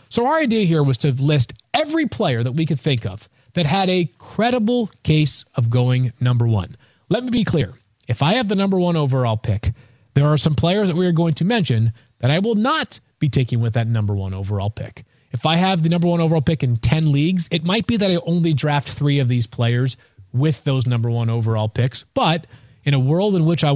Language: English